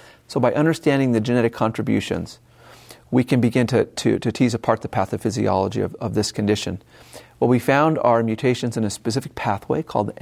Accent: American